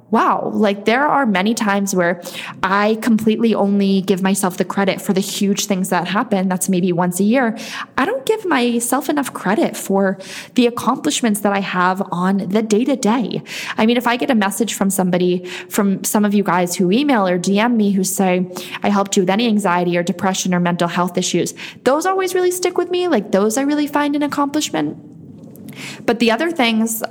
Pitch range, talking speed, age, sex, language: 190-240 Hz, 205 wpm, 20-39, female, English